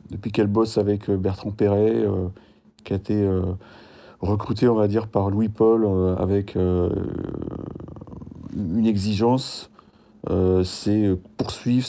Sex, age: male, 30-49